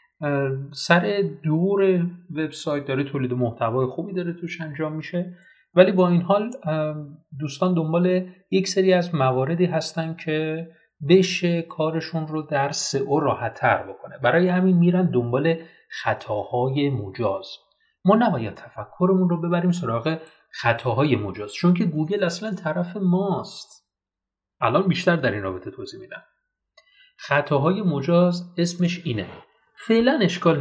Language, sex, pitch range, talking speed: Persian, male, 140-185 Hz, 125 wpm